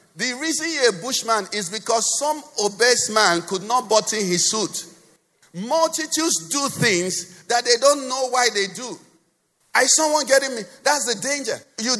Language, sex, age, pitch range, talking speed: English, male, 50-69, 185-255 Hz, 165 wpm